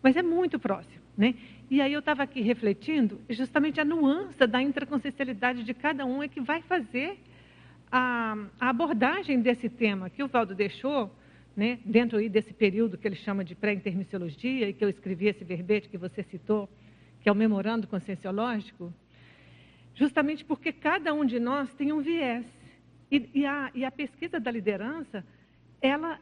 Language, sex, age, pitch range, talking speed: Portuguese, female, 60-79, 215-280 Hz, 165 wpm